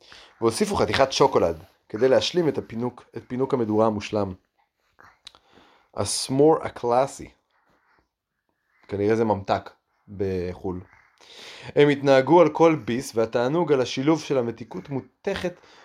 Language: Hebrew